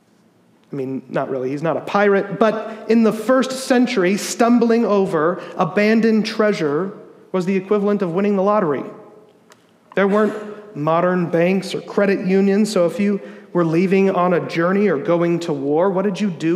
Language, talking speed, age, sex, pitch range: English, 170 wpm, 40-59, male, 160-210 Hz